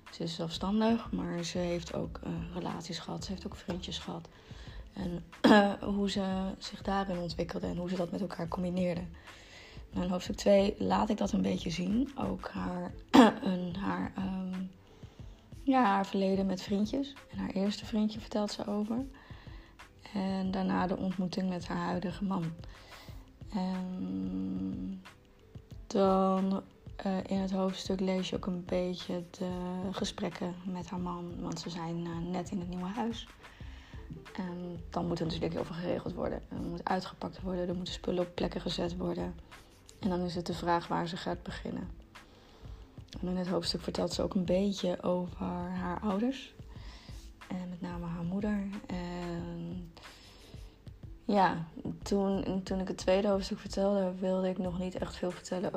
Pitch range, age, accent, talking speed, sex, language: 170-195 Hz, 20-39, Dutch, 160 wpm, female, Dutch